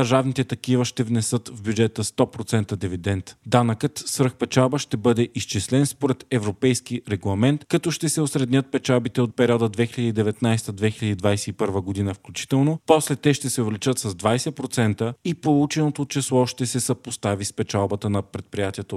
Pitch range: 105-130 Hz